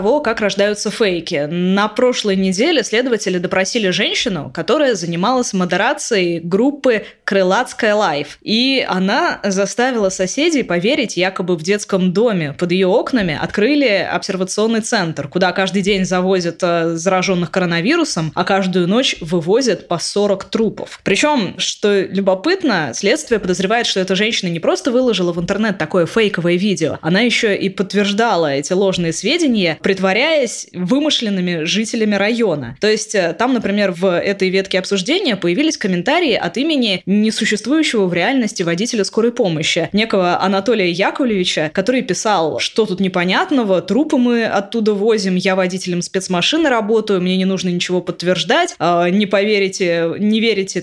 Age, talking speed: 20-39, 130 wpm